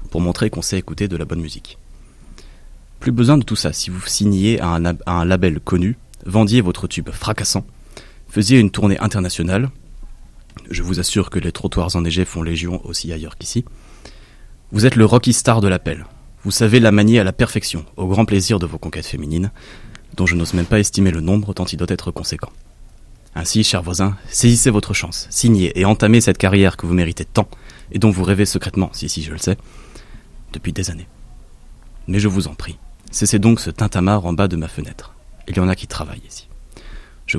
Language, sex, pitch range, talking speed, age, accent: French, male, 85-105 Hz, 200 wpm, 30-49, French